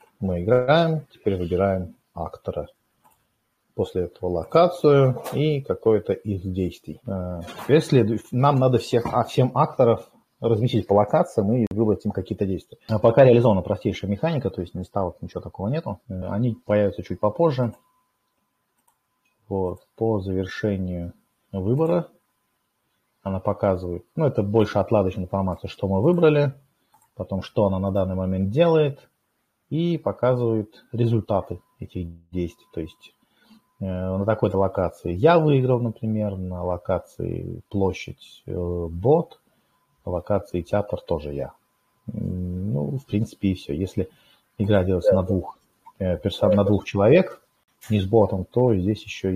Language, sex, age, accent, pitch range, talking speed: Russian, male, 30-49, native, 95-120 Hz, 130 wpm